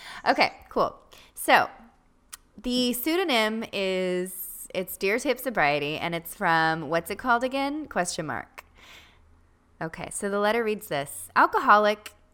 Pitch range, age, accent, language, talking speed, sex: 165-215 Hz, 20-39, American, English, 125 wpm, female